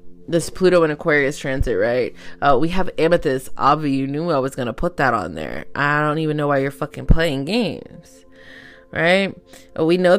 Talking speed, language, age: 195 wpm, English, 20-39